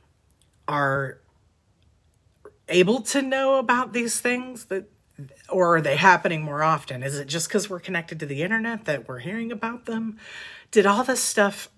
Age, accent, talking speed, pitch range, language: 40-59, American, 165 wpm, 140-190 Hz, English